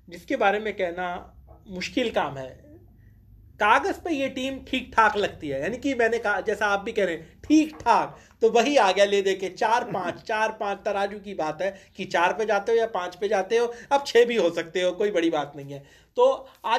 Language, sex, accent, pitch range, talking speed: Hindi, male, native, 175-220 Hz, 230 wpm